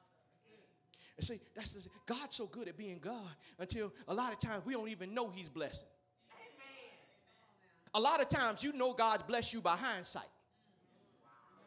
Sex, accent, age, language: male, American, 40-59, English